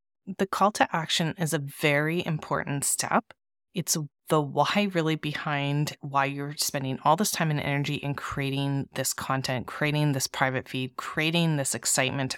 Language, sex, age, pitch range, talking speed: English, female, 30-49, 140-175 Hz, 160 wpm